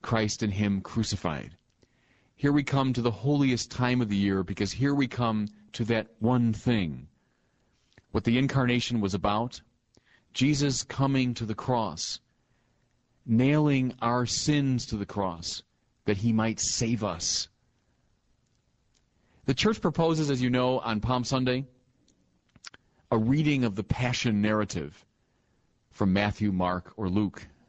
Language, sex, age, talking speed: English, male, 40-59, 135 wpm